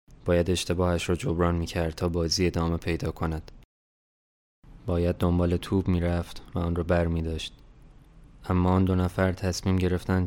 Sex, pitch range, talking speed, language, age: male, 85-90 Hz, 160 wpm, Persian, 20-39